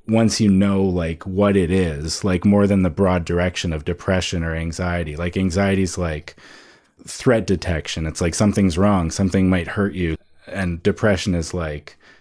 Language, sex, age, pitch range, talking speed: English, male, 30-49, 85-100 Hz, 170 wpm